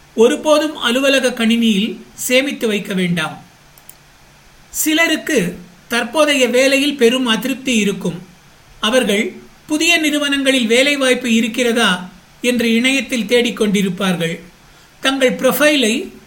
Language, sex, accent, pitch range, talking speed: Tamil, male, native, 210-260 Hz, 75 wpm